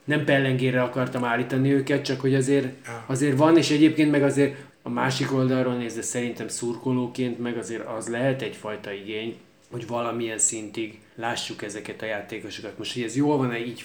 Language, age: Hungarian, 20-39